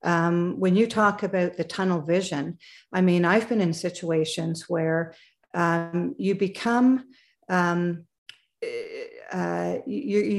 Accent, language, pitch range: American, English, 170-210 Hz